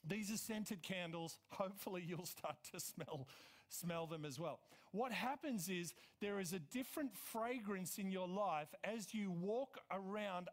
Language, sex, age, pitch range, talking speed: English, male, 50-69, 170-220 Hz, 160 wpm